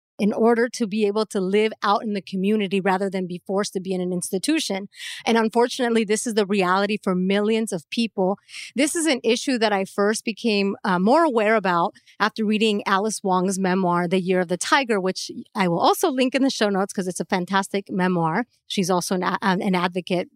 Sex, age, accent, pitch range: female, 30-49, American, 190-230 Hz